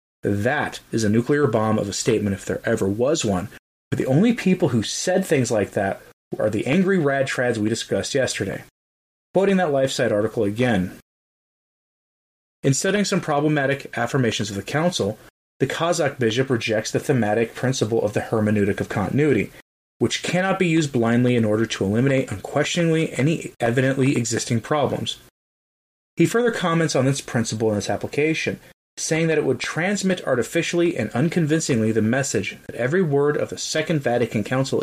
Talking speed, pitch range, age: 165 wpm, 110-155 Hz, 30-49